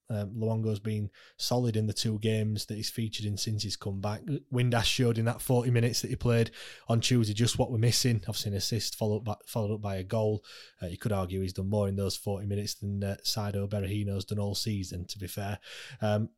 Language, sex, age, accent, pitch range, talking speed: English, male, 20-39, British, 105-120 Hz, 225 wpm